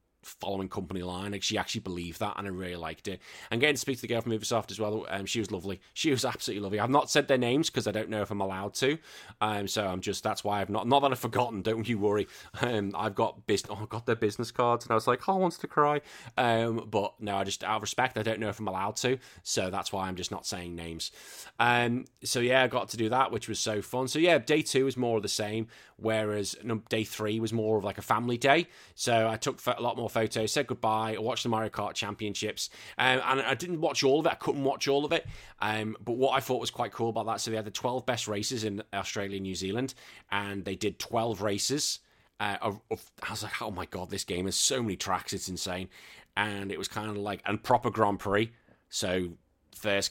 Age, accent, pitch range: 20-39, British, 100-120 Hz